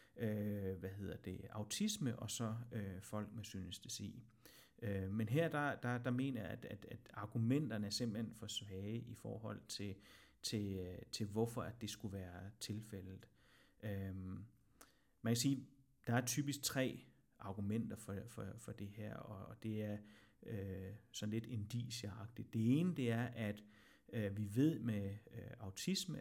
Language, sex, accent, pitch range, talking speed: Danish, male, native, 105-125 Hz, 160 wpm